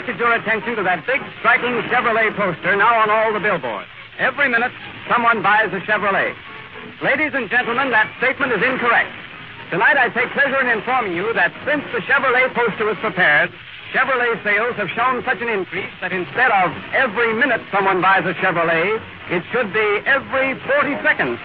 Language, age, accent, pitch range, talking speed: English, 60-79, American, 205-260 Hz, 175 wpm